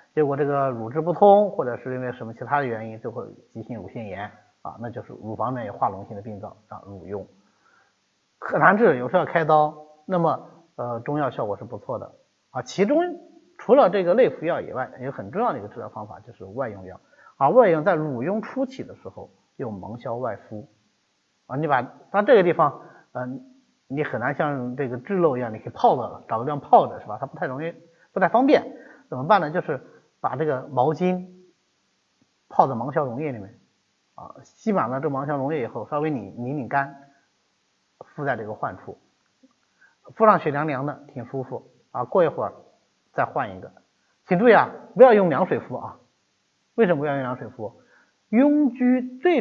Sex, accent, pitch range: male, native, 125-205 Hz